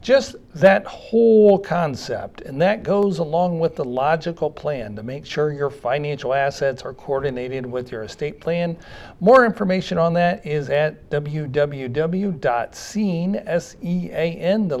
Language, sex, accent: English, male, American